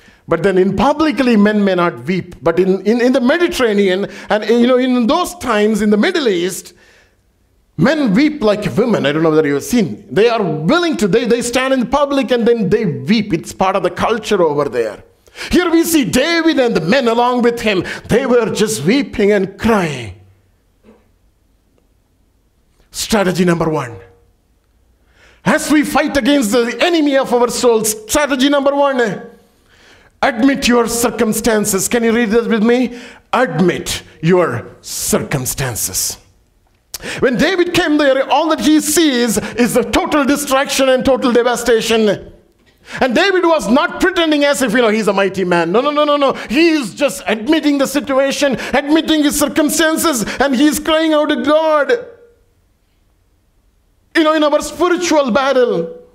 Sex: male